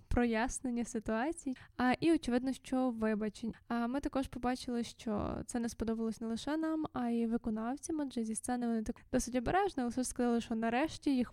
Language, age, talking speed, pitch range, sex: Ukrainian, 20-39, 170 wpm, 235-265 Hz, female